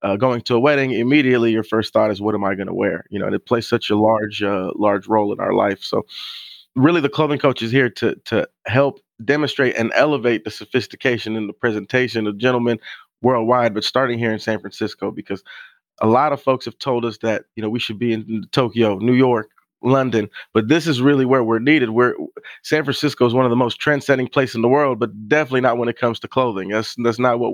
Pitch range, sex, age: 110-130 Hz, male, 30-49